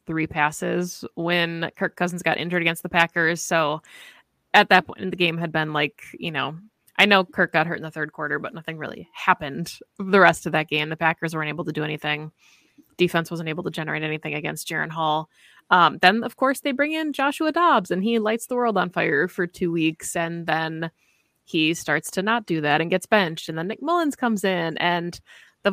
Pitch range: 160-185 Hz